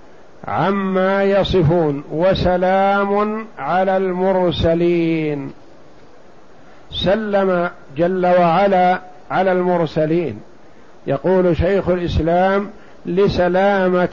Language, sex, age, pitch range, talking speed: Arabic, male, 50-69, 170-190 Hz, 60 wpm